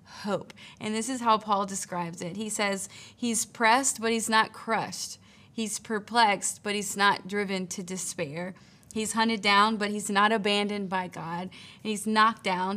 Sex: female